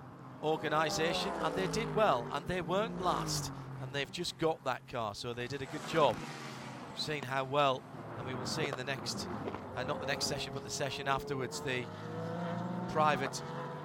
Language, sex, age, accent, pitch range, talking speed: English, male, 40-59, British, 140-175 Hz, 185 wpm